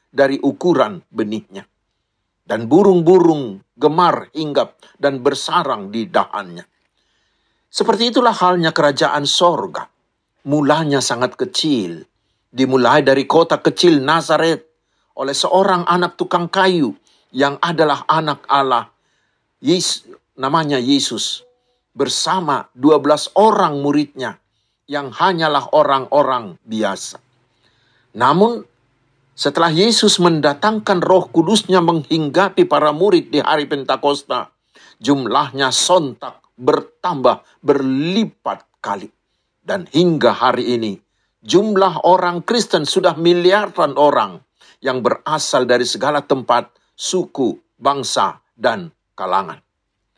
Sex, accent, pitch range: male, native, 140-190 Hz